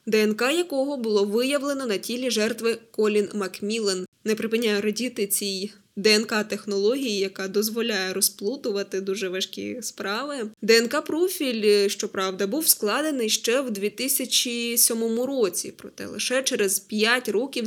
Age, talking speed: 10-29, 110 wpm